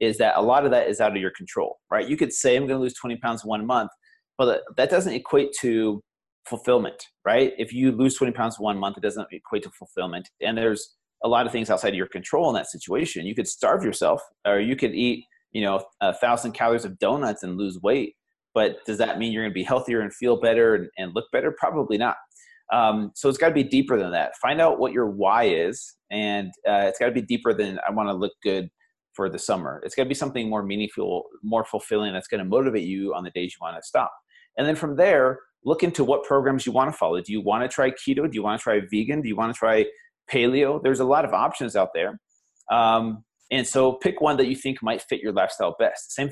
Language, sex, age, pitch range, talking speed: English, male, 30-49, 110-135 Hz, 245 wpm